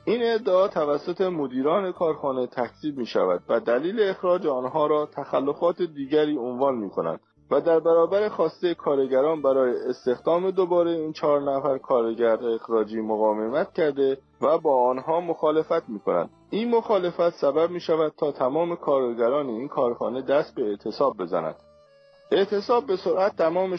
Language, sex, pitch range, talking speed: Persian, male, 140-185 Hz, 145 wpm